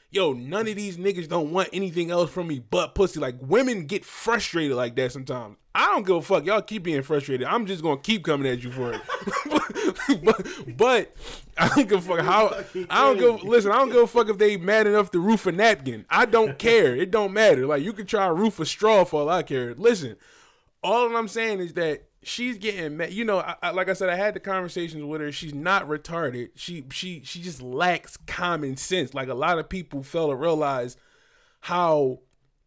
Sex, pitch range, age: male, 145-205 Hz, 20-39